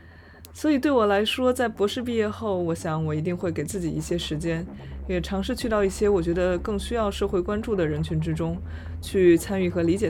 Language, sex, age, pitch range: Chinese, female, 20-39, 155-195 Hz